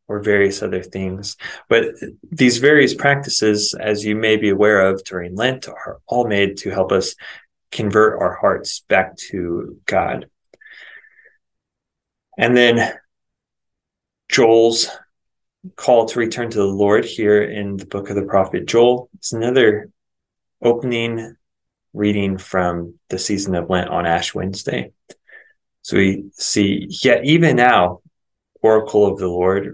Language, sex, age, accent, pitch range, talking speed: English, male, 20-39, American, 95-120 Hz, 135 wpm